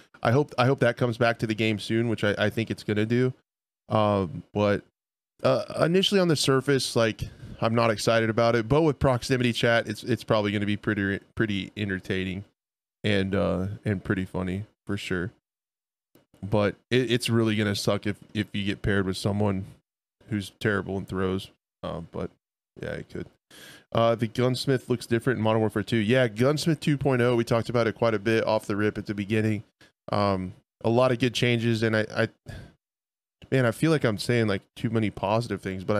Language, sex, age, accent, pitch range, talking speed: English, male, 20-39, American, 100-120 Hz, 195 wpm